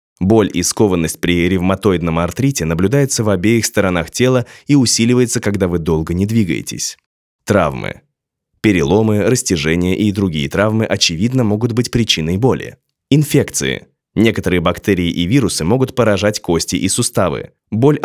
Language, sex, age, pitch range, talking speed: Russian, male, 20-39, 90-120 Hz, 135 wpm